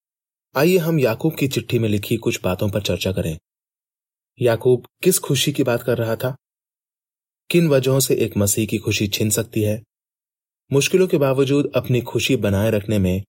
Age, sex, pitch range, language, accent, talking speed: 30-49, male, 110-145 Hz, Hindi, native, 170 wpm